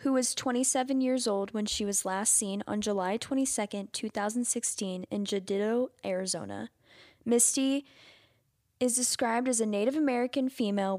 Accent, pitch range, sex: American, 195-245 Hz, female